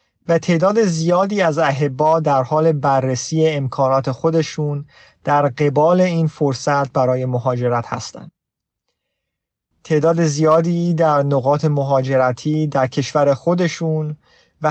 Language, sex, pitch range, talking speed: Persian, male, 135-170 Hz, 105 wpm